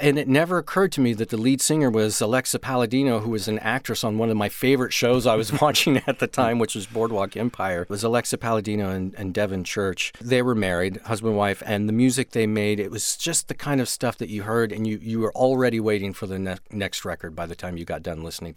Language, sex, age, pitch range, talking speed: English, male, 40-59, 105-135 Hz, 255 wpm